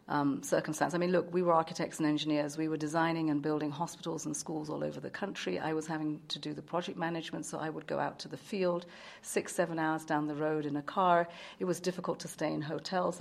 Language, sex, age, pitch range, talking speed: English, female, 40-59, 155-180 Hz, 245 wpm